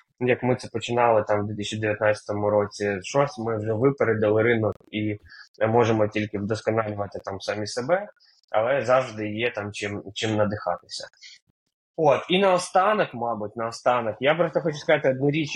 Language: Ukrainian